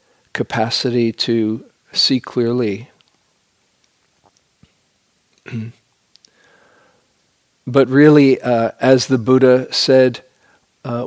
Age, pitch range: 50-69, 120-140 Hz